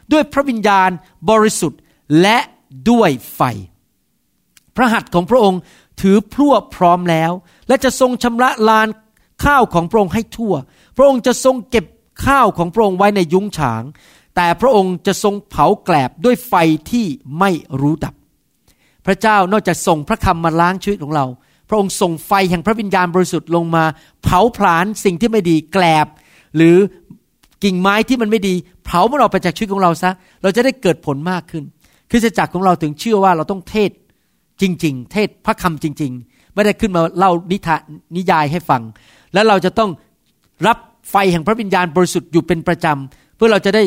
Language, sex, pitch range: Thai, male, 160-210 Hz